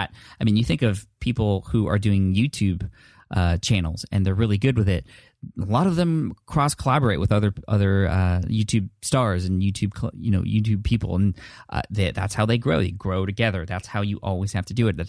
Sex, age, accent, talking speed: male, 20-39, American, 220 wpm